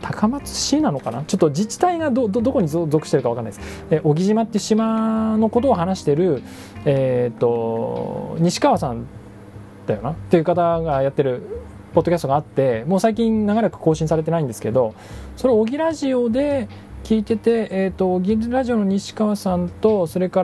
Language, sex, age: Japanese, male, 20-39